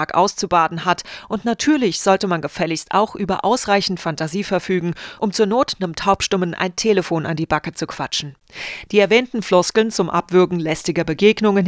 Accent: German